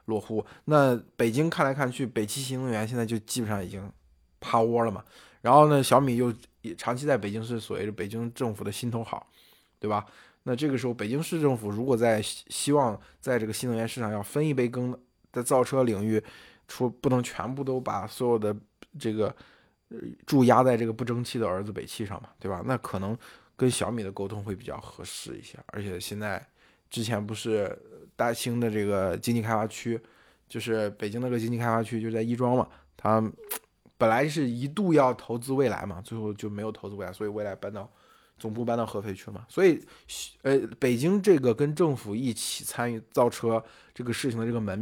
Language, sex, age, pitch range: Chinese, male, 20-39, 110-130 Hz